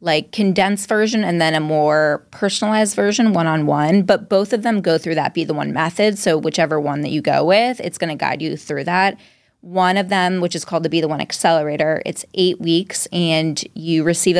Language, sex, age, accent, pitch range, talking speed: English, female, 20-39, American, 155-190 Hz, 215 wpm